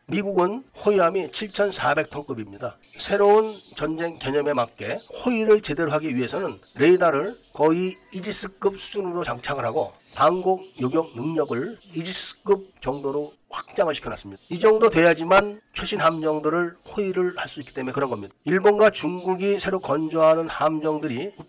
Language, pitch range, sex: Korean, 150-200 Hz, male